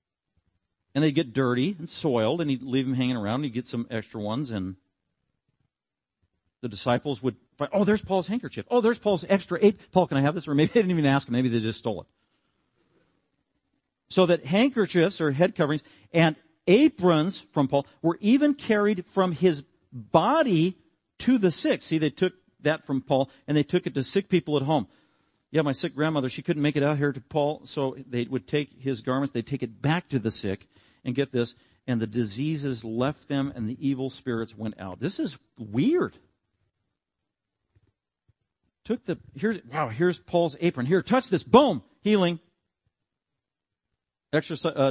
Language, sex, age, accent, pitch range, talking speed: English, male, 50-69, American, 125-170 Hz, 185 wpm